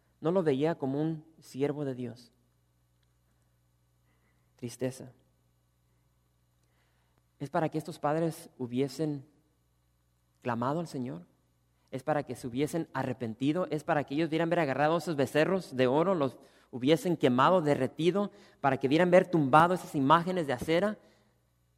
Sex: male